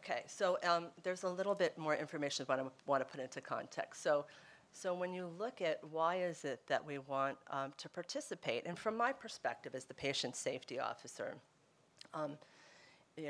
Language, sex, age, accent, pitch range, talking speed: English, female, 40-59, American, 135-175 Hz, 190 wpm